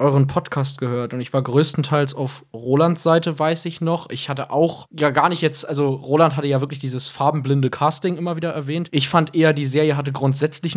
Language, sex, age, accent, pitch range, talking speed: German, male, 20-39, German, 135-160 Hz, 210 wpm